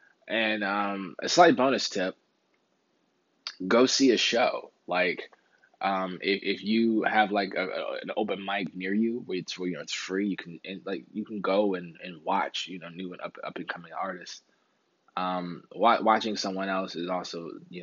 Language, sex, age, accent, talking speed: English, male, 20-39, American, 190 wpm